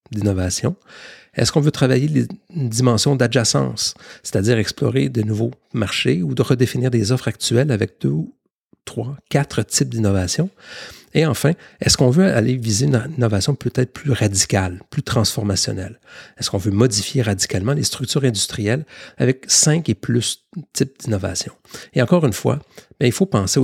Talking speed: 155 wpm